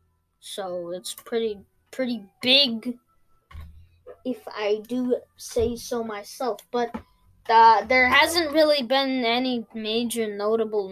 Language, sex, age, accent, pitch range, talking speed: English, female, 20-39, American, 185-260 Hz, 110 wpm